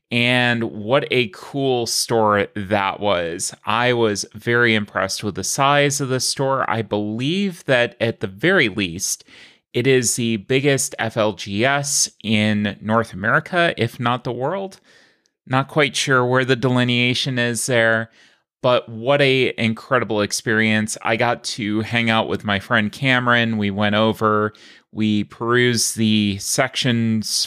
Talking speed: 140 wpm